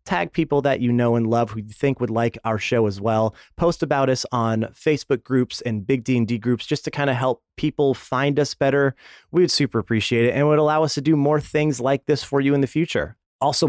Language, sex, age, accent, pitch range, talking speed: English, male, 30-49, American, 120-160 Hz, 245 wpm